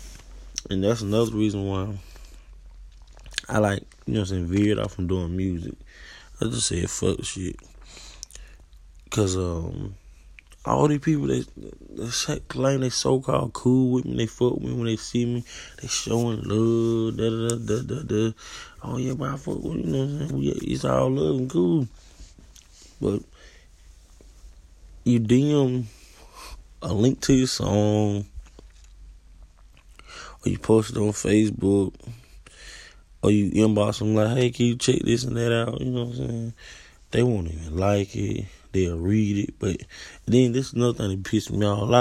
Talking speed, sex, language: 175 wpm, male, English